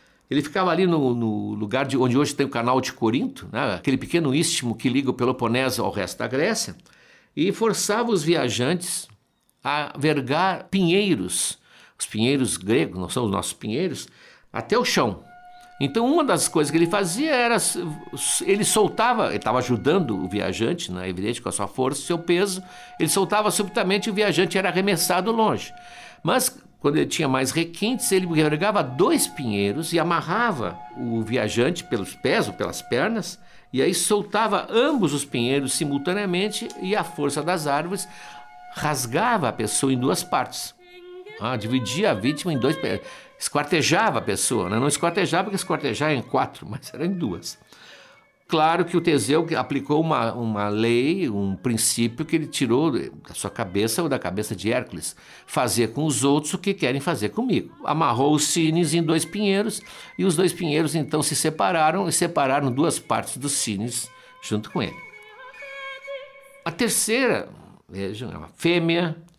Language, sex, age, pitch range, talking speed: Portuguese, male, 60-79, 130-200 Hz, 165 wpm